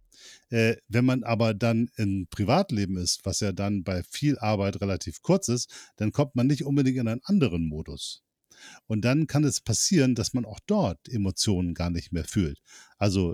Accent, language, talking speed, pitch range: German, German, 180 wpm, 100-125 Hz